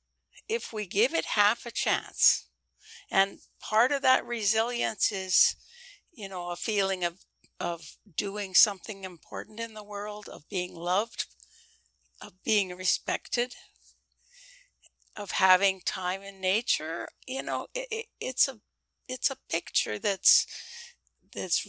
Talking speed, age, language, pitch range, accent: 130 wpm, 60-79, English, 180-230 Hz, American